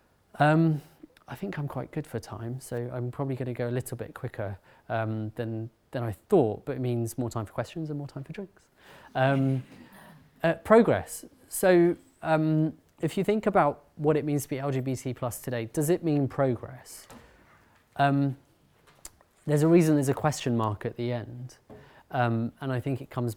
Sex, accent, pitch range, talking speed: male, British, 115-145 Hz, 185 wpm